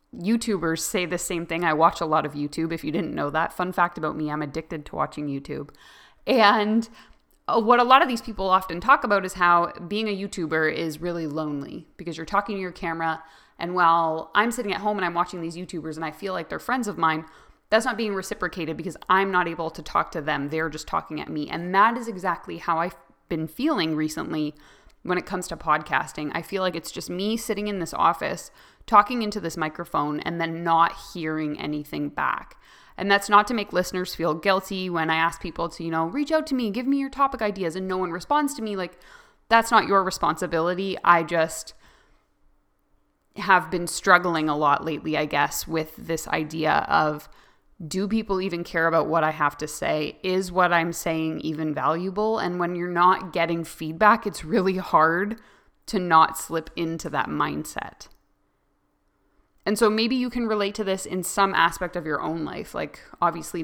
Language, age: English, 20-39